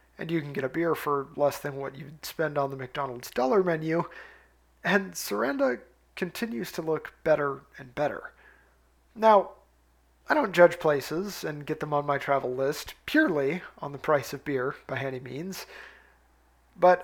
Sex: male